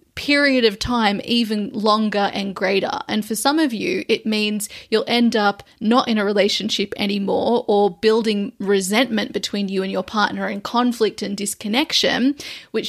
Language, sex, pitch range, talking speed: English, female, 205-235 Hz, 165 wpm